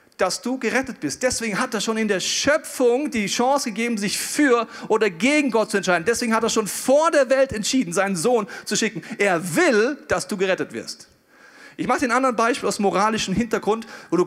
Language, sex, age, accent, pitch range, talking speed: German, male, 40-59, German, 150-225 Hz, 205 wpm